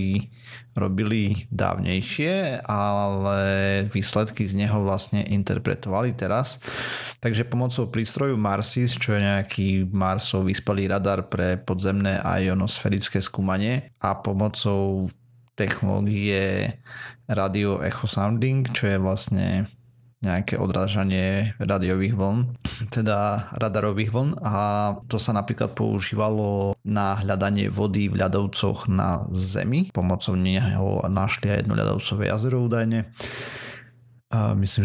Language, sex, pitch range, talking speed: Slovak, male, 100-115 Hz, 105 wpm